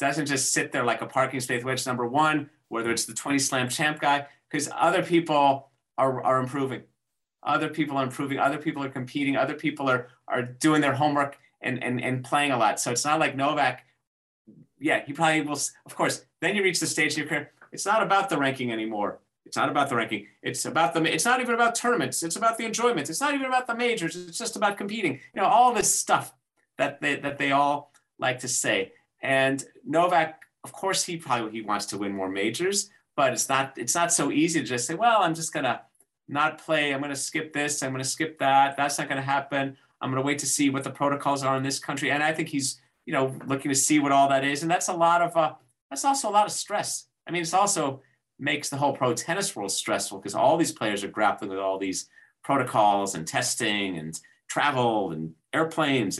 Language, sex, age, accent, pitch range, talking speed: English, male, 40-59, American, 130-160 Hz, 230 wpm